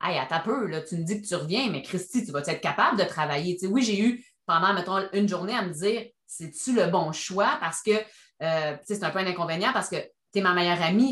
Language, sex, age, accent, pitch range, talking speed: French, female, 30-49, Canadian, 170-215 Hz, 290 wpm